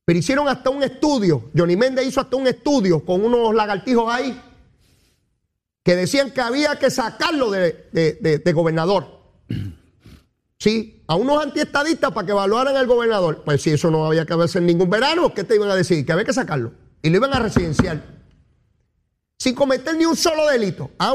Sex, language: male, Spanish